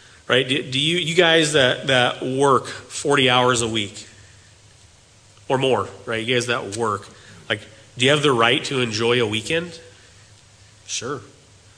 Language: English